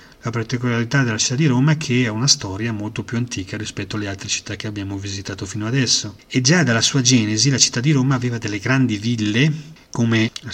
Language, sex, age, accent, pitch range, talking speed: Italian, male, 30-49, native, 100-125 Hz, 215 wpm